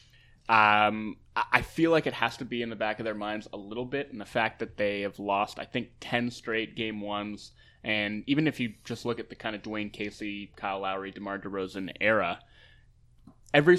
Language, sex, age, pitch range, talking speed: English, male, 20-39, 105-125 Hz, 210 wpm